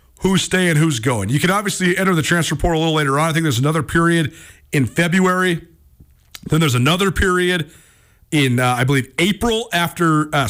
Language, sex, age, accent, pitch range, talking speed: English, male, 40-59, American, 130-175 Hz, 190 wpm